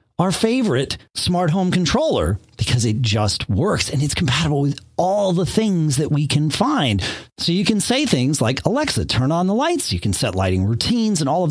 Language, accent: English, American